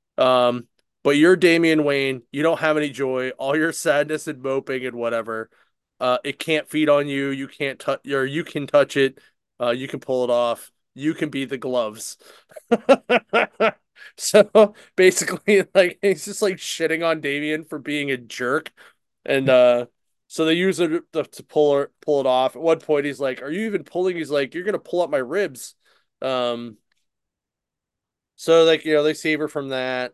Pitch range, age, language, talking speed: 125-160 Hz, 20-39, English, 195 wpm